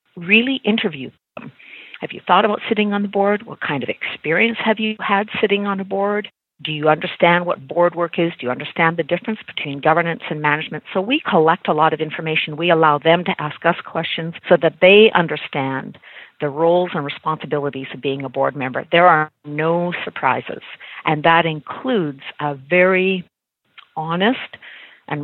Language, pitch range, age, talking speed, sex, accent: English, 150-180 Hz, 50-69, 180 wpm, female, American